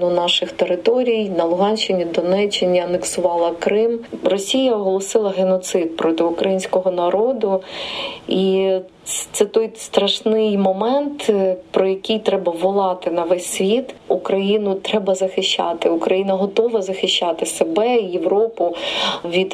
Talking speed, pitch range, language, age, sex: 105 wpm, 180-200 Hz, Ukrainian, 20-39, female